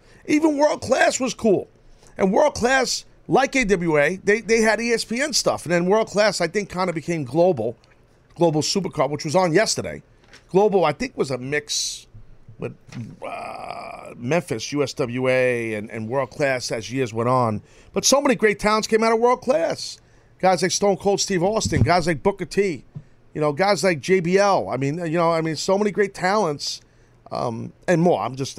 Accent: American